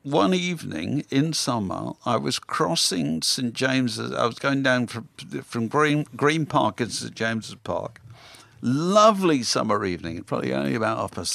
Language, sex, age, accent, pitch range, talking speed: English, male, 50-69, British, 100-140 Hz, 160 wpm